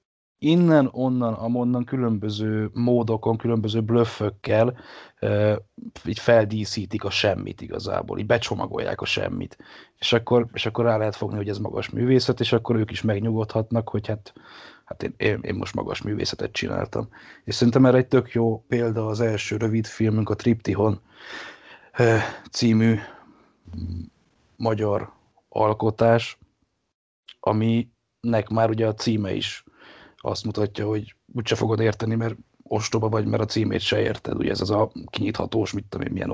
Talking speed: 145 wpm